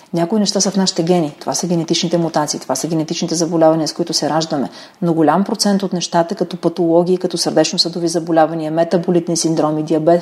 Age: 40-59